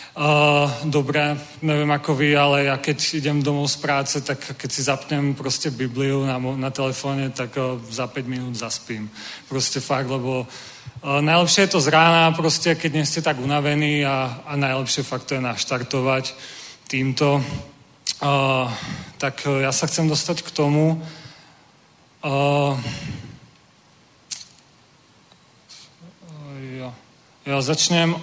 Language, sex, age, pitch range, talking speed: Czech, male, 40-59, 135-155 Hz, 120 wpm